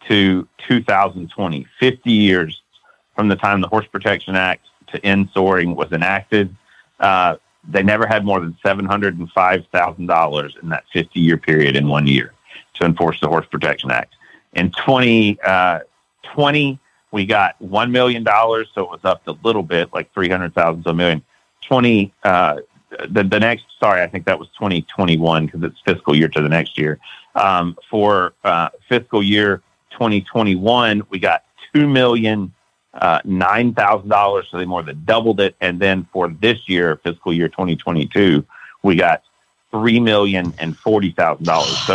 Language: English